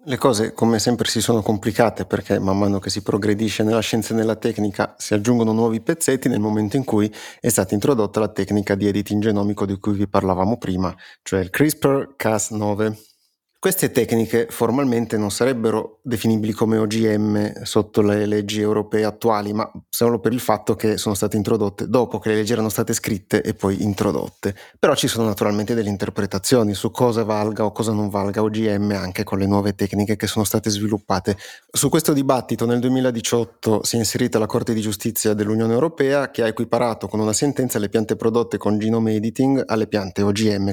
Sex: male